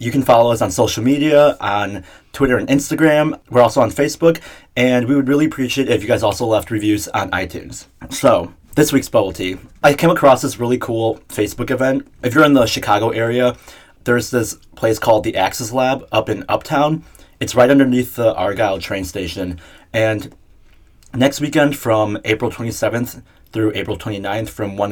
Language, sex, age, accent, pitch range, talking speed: English, male, 30-49, American, 100-130 Hz, 185 wpm